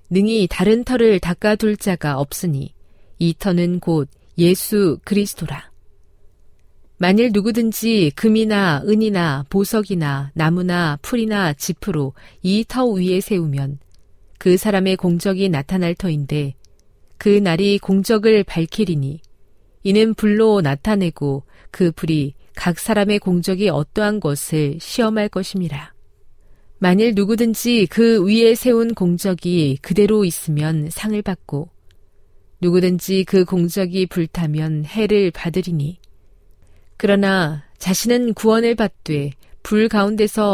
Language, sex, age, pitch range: Korean, female, 40-59, 150-205 Hz